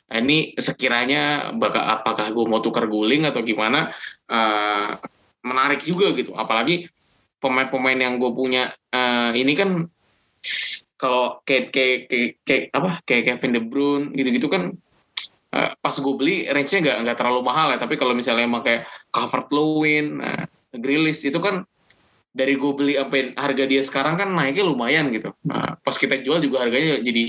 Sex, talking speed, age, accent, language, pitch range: male, 160 wpm, 20-39, native, Indonesian, 120-165 Hz